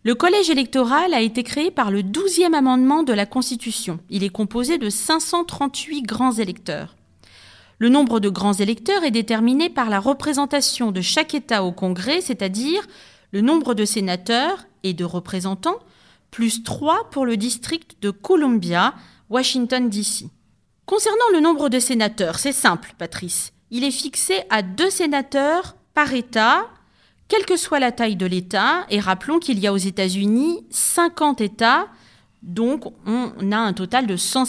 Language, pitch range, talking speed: French, 205-300 Hz, 160 wpm